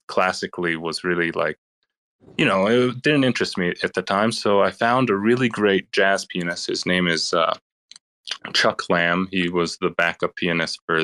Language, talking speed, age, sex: English, 180 wpm, 20-39, male